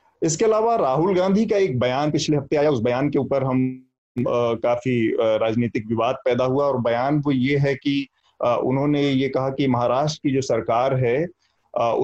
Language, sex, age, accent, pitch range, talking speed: Hindi, male, 30-49, native, 125-150 Hz, 190 wpm